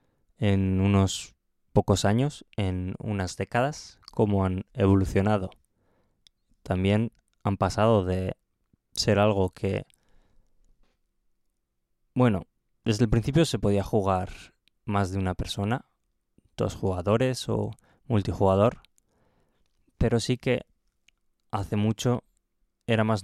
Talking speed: 100 wpm